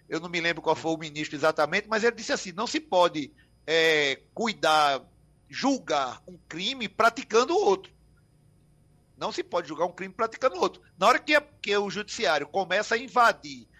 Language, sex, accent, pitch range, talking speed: Portuguese, male, Brazilian, 165-230 Hz, 175 wpm